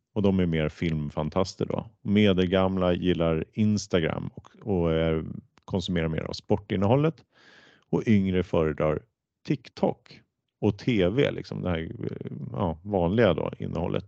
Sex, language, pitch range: male, Swedish, 85-110 Hz